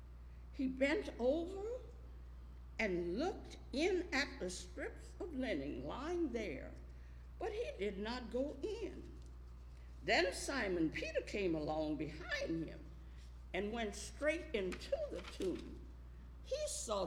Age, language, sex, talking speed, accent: 60-79, English, female, 120 wpm, American